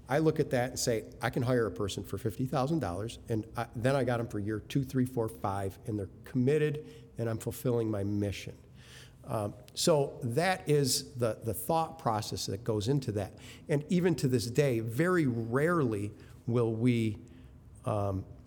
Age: 50-69